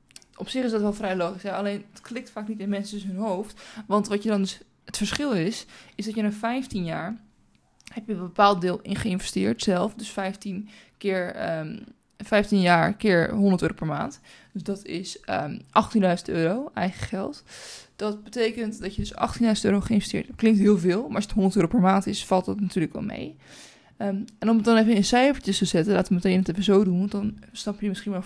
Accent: Dutch